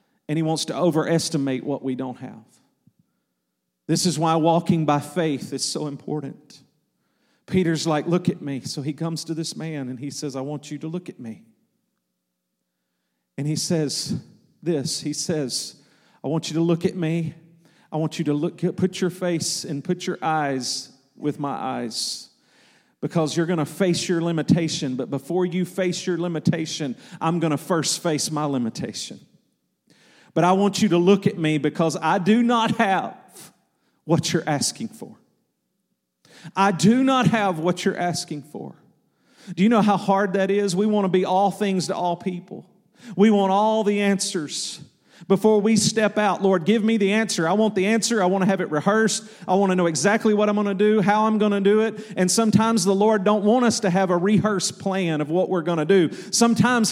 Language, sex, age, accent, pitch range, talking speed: English, male, 40-59, American, 160-210 Hz, 195 wpm